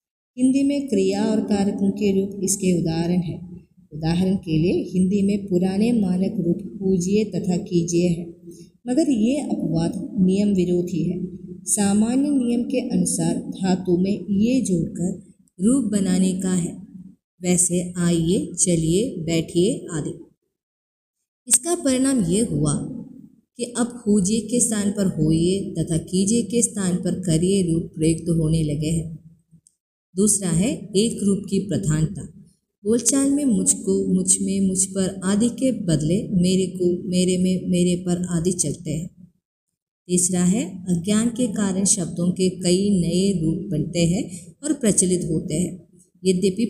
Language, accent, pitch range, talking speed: Hindi, native, 175-200 Hz, 140 wpm